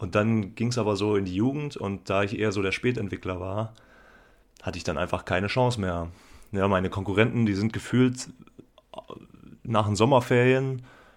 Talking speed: 175 wpm